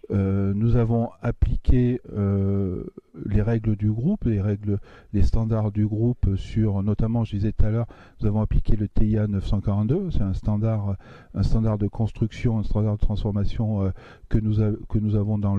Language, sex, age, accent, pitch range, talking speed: French, male, 40-59, French, 100-115 Hz, 175 wpm